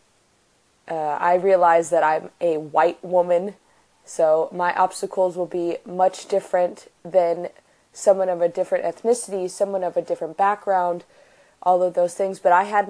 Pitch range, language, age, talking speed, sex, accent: 170-195 Hz, English, 20-39, 155 wpm, female, American